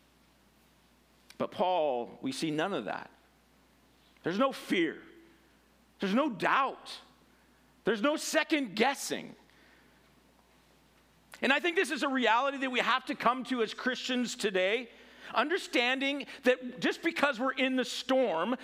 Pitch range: 225-275 Hz